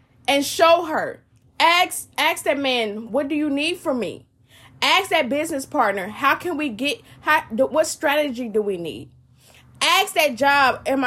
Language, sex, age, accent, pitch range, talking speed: English, female, 20-39, American, 225-310 Hz, 170 wpm